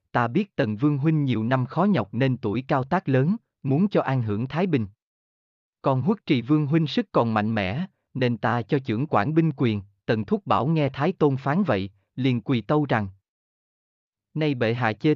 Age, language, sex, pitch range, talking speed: 20-39, Vietnamese, male, 115-160 Hz, 205 wpm